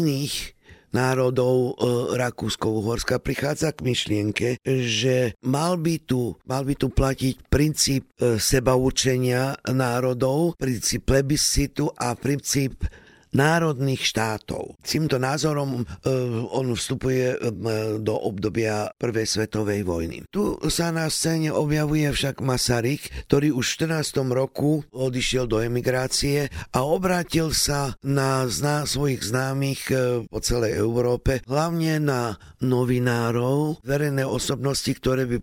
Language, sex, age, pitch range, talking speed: Slovak, male, 50-69, 115-140 Hz, 110 wpm